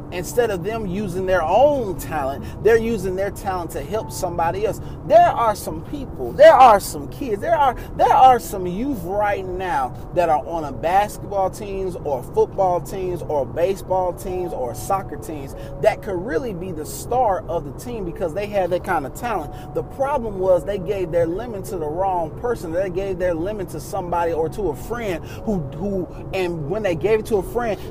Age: 30-49